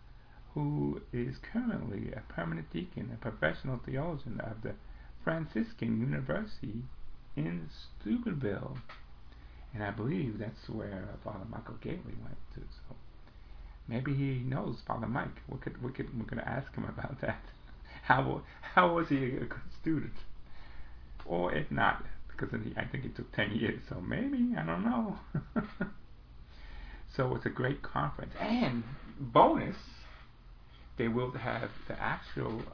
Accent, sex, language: American, male, English